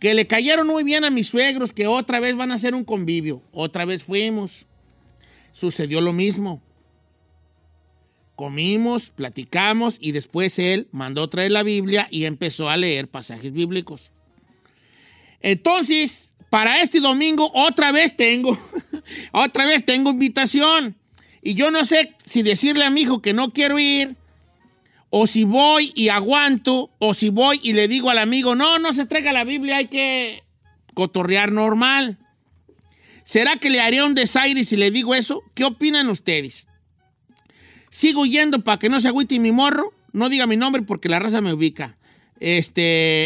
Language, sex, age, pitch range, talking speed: Spanish, male, 50-69, 175-270 Hz, 160 wpm